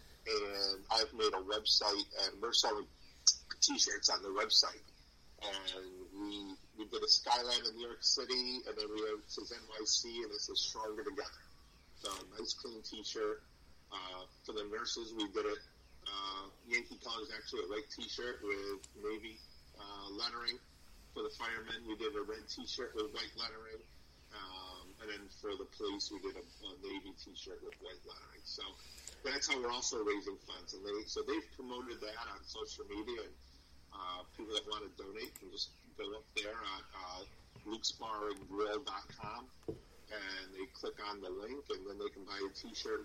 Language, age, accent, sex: English, 30-49, American, male